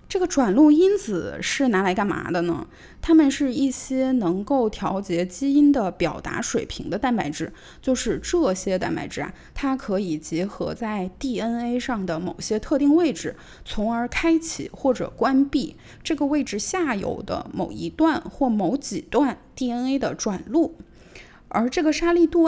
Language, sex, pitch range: Chinese, female, 205-295 Hz